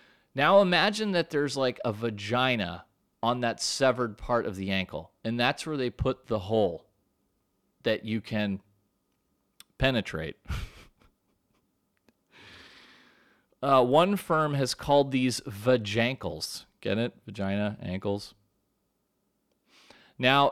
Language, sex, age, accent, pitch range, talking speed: English, male, 30-49, American, 105-150 Hz, 110 wpm